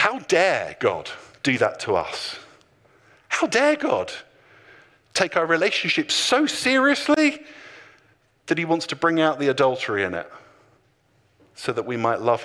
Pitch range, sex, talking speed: 110-170 Hz, male, 145 wpm